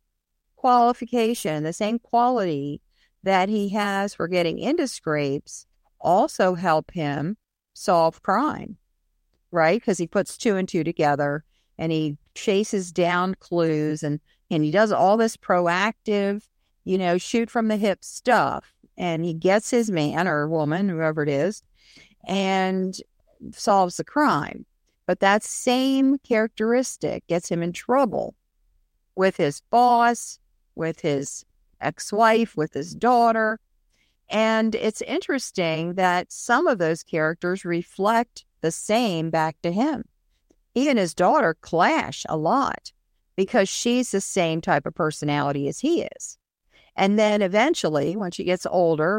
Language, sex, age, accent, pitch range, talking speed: English, female, 50-69, American, 160-230 Hz, 135 wpm